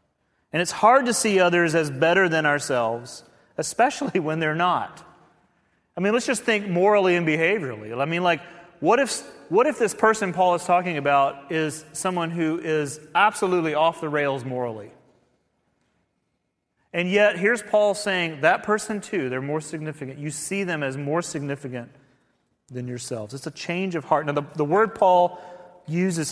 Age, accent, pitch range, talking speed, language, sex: 30-49, American, 140-185 Hz, 170 wpm, English, male